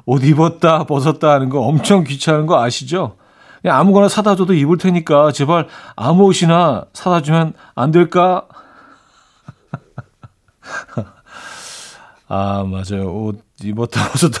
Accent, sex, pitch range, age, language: native, male, 120-175 Hz, 40-59, Korean